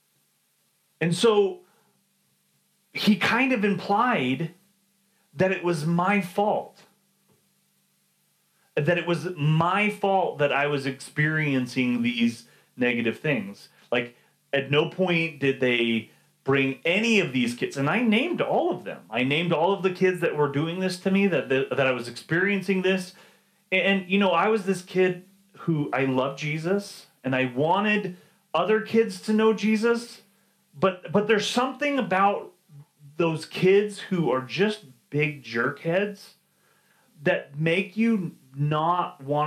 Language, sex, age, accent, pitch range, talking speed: English, male, 30-49, American, 140-195 Hz, 145 wpm